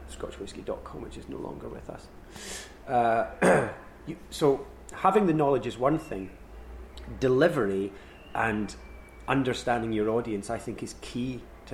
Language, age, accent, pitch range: English, 30-49, British, 105-125 Hz